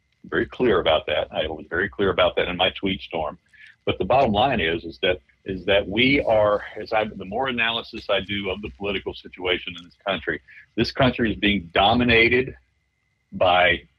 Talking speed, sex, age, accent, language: 195 wpm, male, 50-69, American, English